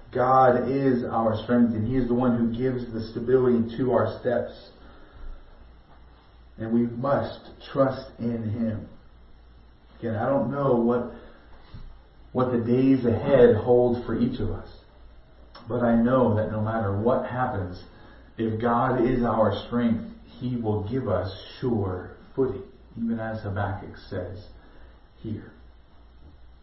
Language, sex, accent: English, male, American